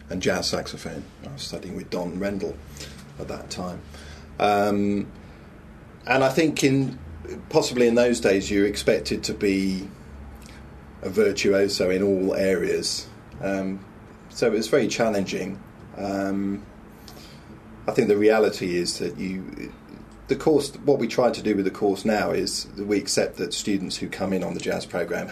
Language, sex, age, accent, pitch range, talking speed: English, male, 30-49, British, 90-105 Hz, 160 wpm